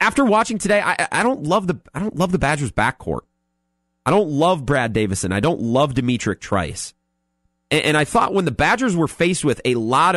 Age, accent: 30-49, American